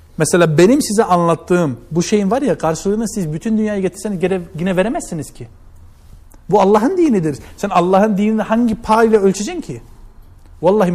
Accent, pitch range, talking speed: native, 160-220 Hz, 155 wpm